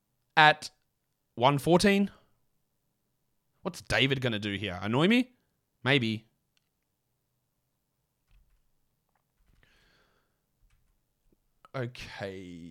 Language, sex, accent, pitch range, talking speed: English, male, Australian, 120-170 Hz, 55 wpm